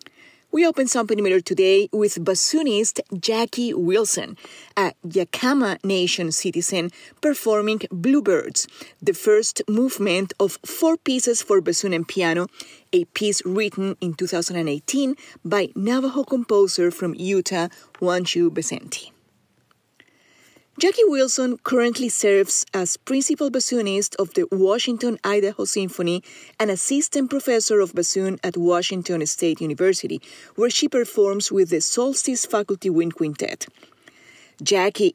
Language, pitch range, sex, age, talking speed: English, 175-240 Hz, female, 30-49, 115 wpm